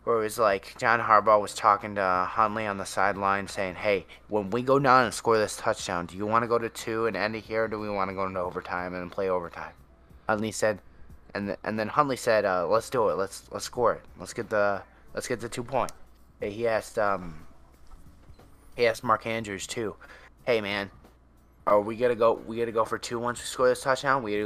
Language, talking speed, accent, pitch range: English, 235 wpm, American, 90-115 Hz